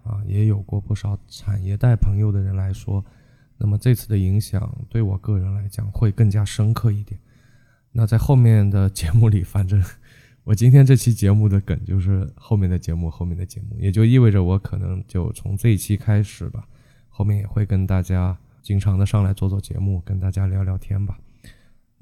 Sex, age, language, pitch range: male, 20-39, Chinese, 100-115 Hz